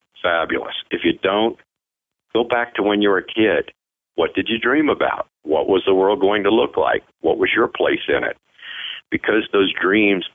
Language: English